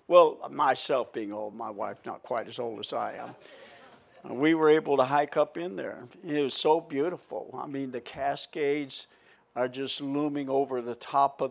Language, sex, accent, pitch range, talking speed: English, male, American, 125-140 Hz, 190 wpm